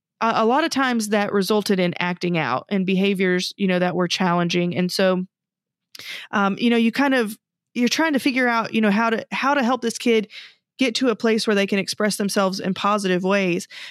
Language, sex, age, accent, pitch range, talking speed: English, female, 30-49, American, 200-250 Hz, 215 wpm